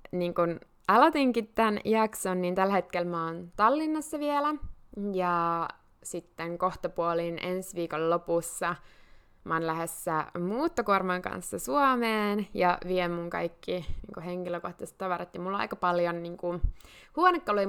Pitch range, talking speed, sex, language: 170-210 Hz, 120 wpm, female, Finnish